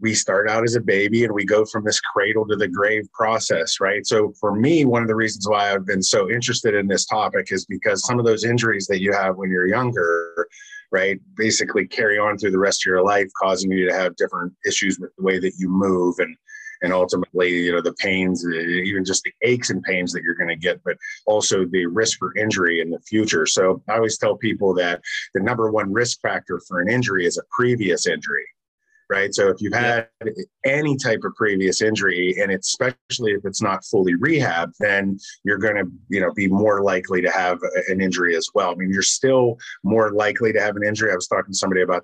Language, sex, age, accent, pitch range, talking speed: English, male, 30-49, American, 95-125 Hz, 225 wpm